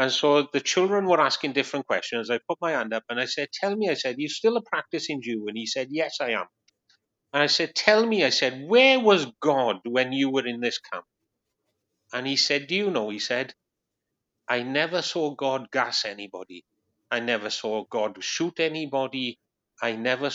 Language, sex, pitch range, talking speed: English, male, 115-165 Hz, 205 wpm